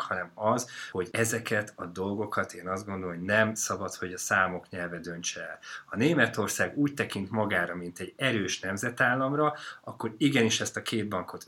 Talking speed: 175 wpm